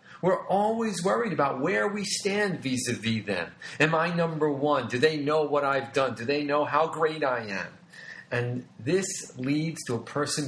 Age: 40-59